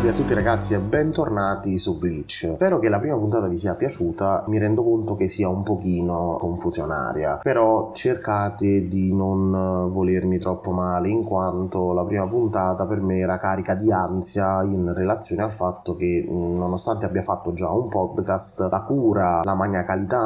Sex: male